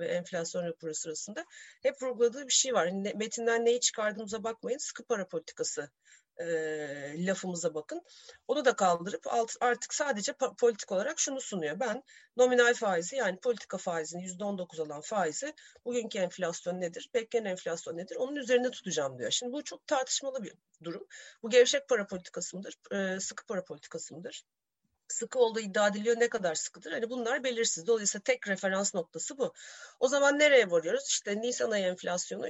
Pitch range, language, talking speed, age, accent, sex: 185-250 Hz, Turkish, 170 wpm, 40-59, native, female